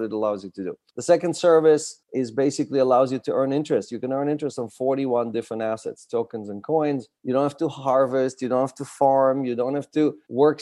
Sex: male